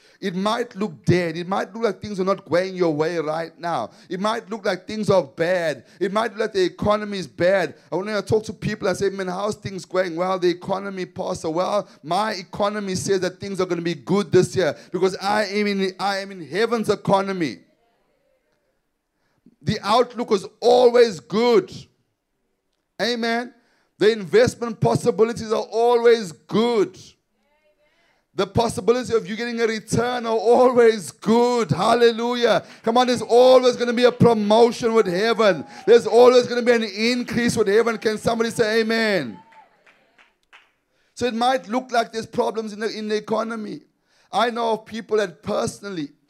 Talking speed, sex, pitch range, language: 175 wpm, male, 190-235 Hz, English